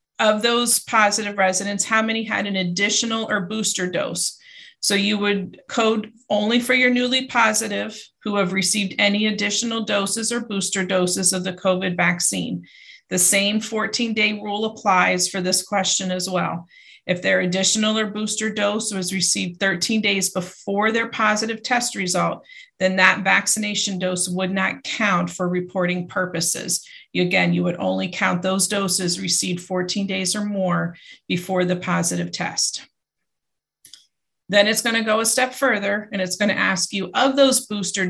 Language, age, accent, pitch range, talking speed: English, 40-59, American, 185-215 Hz, 160 wpm